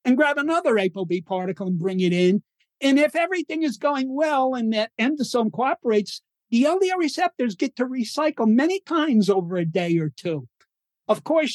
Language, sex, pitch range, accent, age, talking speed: English, male, 185-255 Hz, American, 50-69, 175 wpm